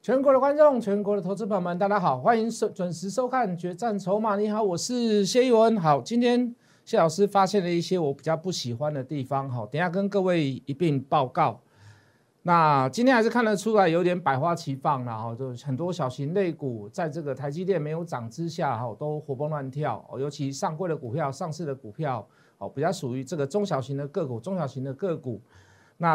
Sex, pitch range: male, 135-190 Hz